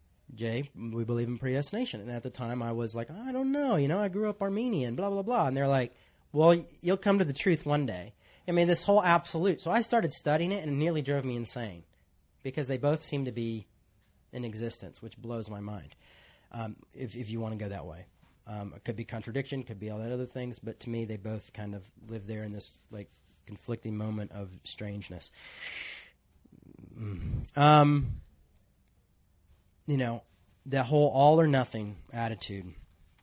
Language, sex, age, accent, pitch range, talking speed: English, male, 30-49, American, 105-155 Hz, 200 wpm